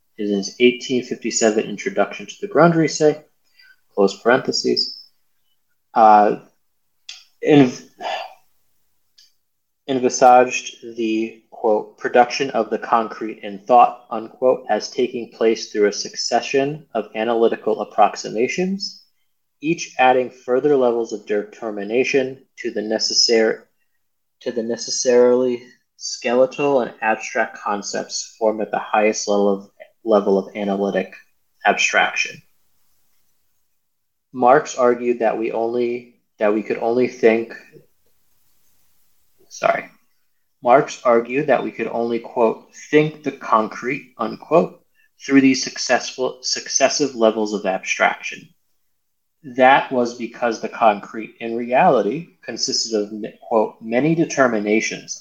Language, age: English, 20-39